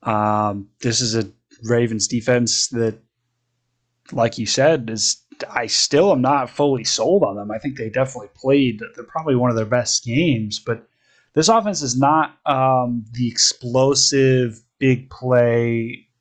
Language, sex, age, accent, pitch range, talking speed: English, male, 20-39, American, 115-135 Hz, 150 wpm